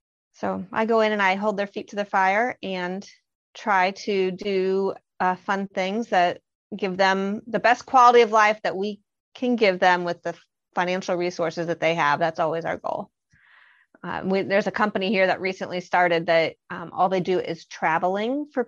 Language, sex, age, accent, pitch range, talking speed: English, female, 30-49, American, 175-210 Hz, 190 wpm